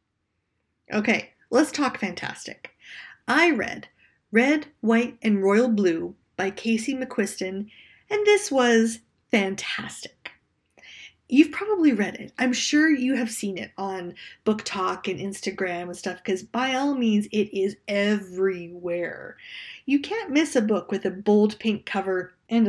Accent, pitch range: American, 195-245 Hz